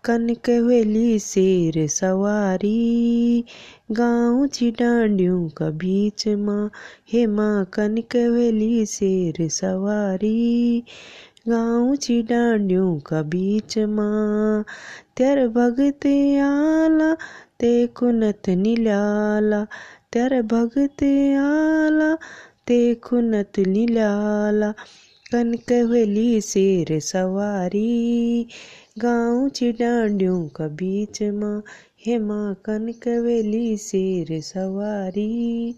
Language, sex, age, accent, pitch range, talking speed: Hindi, female, 20-39, native, 205-240 Hz, 65 wpm